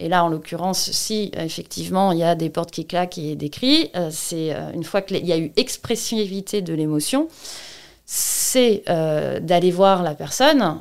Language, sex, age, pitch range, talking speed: French, female, 30-49, 175-240 Hz, 170 wpm